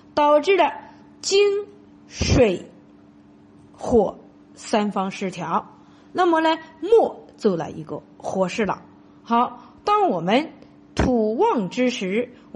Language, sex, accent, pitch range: Chinese, female, native, 200-335 Hz